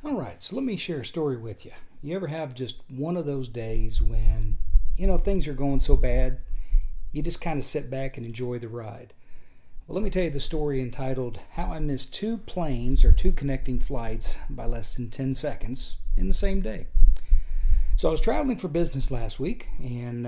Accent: American